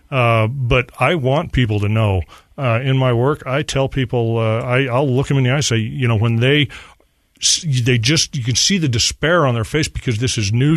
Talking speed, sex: 235 wpm, male